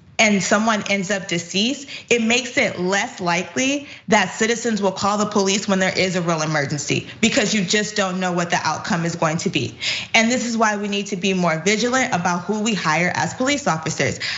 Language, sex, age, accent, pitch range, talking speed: English, female, 20-39, American, 185-230 Hz, 215 wpm